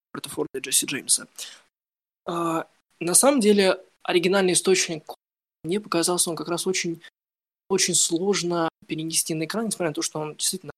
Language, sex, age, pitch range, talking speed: Ukrainian, male, 20-39, 155-185 Hz, 155 wpm